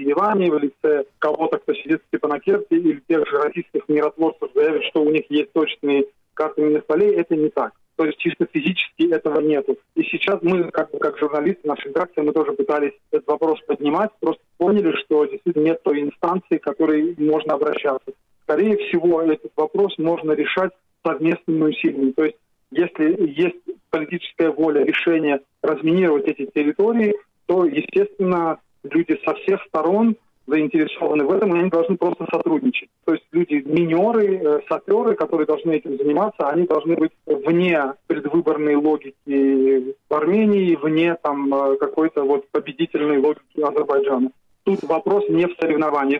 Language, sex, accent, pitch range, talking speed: Russian, male, native, 150-195 Hz, 145 wpm